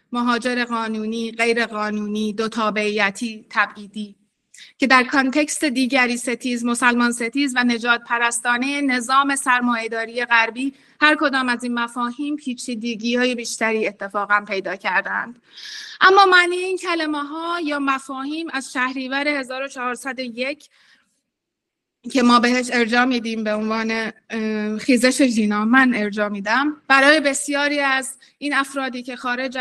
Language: Persian